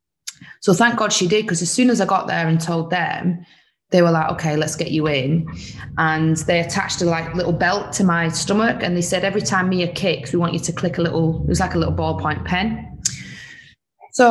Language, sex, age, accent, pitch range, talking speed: English, female, 20-39, British, 160-185 Hz, 235 wpm